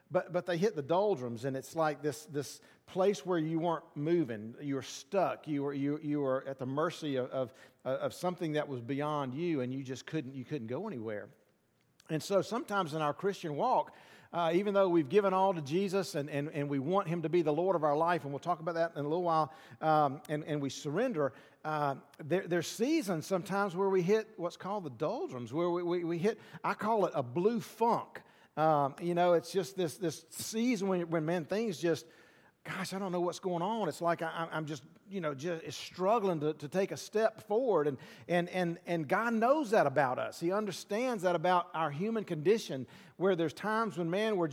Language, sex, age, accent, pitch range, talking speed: English, male, 50-69, American, 150-190 Hz, 220 wpm